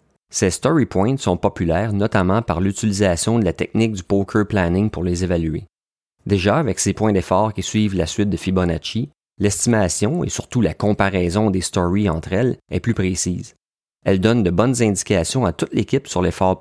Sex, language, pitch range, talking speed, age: male, French, 90-110 Hz, 180 wpm, 30-49